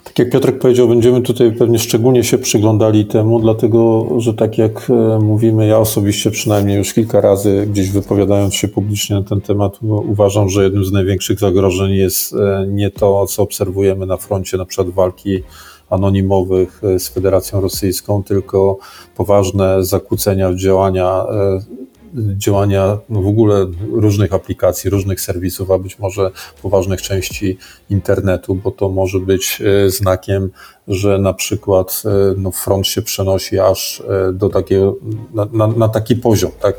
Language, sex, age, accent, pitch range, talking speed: Polish, male, 40-59, native, 95-110 Hz, 145 wpm